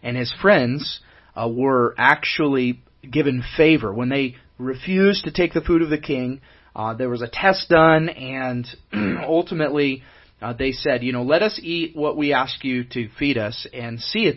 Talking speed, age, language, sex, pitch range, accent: 185 wpm, 30-49, English, male, 115-145 Hz, American